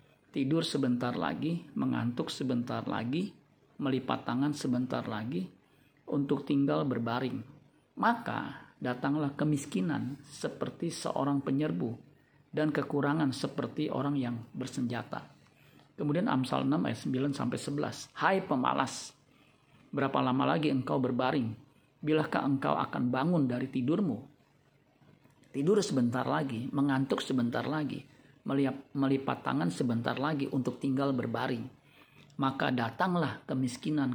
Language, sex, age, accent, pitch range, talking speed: Indonesian, male, 50-69, native, 130-145 Hz, 105 wpm